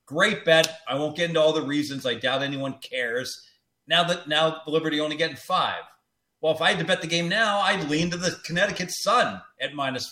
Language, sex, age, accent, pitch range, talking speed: English, male, 40-59, American, 135-170 Hz, 225 wpm